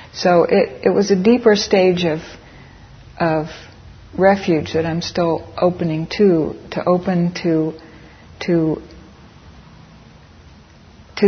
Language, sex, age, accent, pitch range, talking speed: English, female, 60-79, American, 155-185 Hz, 105 wpm